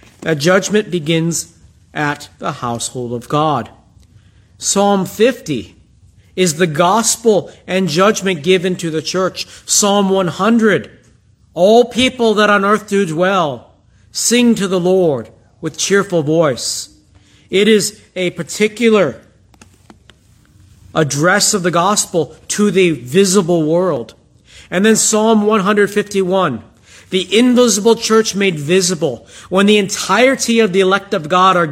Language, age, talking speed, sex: English, 50-69, 125 wpm, male